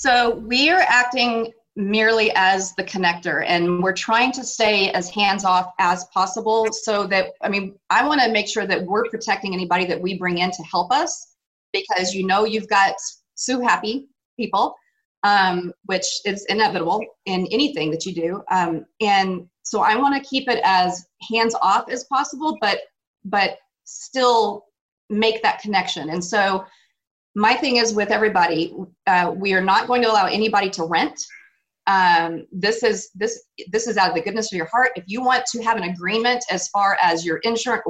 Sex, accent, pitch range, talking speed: female, American, 180-230 Hz, 185 wpm